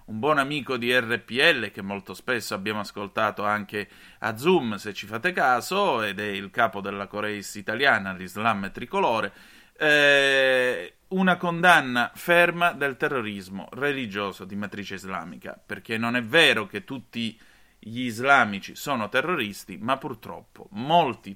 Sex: male